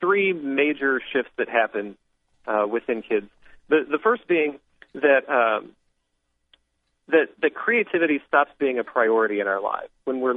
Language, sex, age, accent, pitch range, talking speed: English, male, 40-59, American, 105-145 Hz, 150 wpm